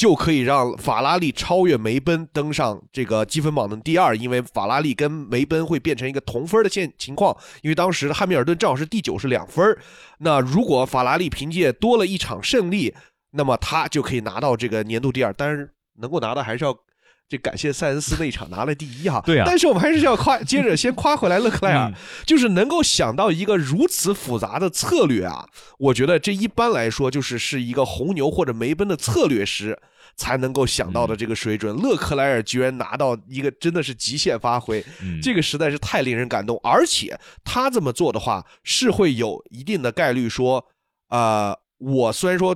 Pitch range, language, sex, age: 120-165 Hz, Chinese, male, 20-39